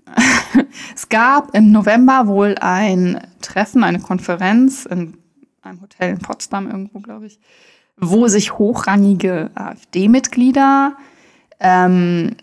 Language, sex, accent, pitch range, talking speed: German, female, German, 180-230 Hz, 105 wpm